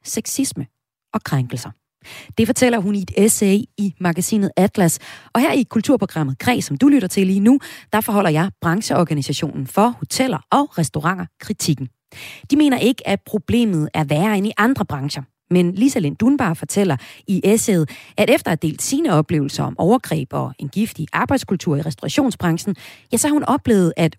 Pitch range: 155-235 Hz